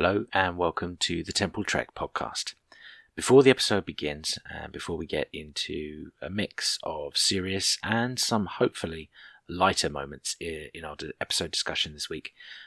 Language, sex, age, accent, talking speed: English, male, 30-49, British, 150 wpm